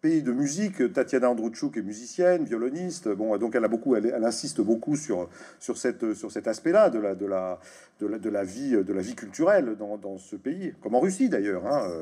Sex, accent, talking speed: male, French, 225 wpm